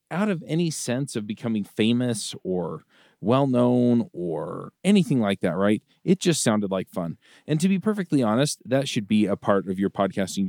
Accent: American